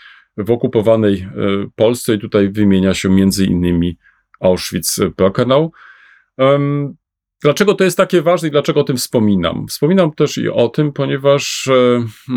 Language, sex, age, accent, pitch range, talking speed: Polish, male, 40-59, native, 110-145 Hz, 125 wpm